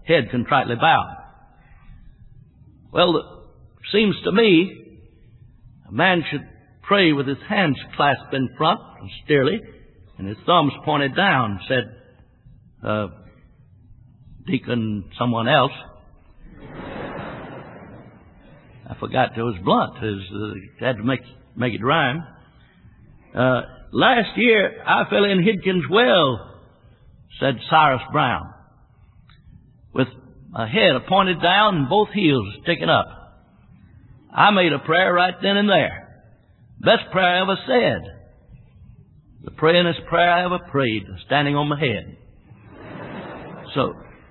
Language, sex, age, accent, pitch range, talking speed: English, male, 60-79, American, 115-170 Hz, 120 wpm